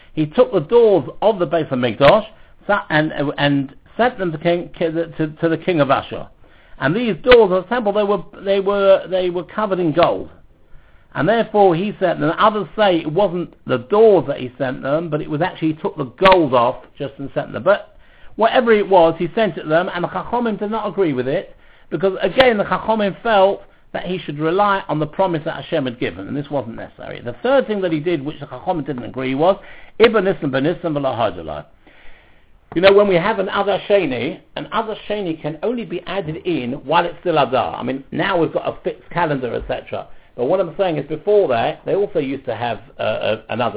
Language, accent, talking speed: English, British, 210 wpm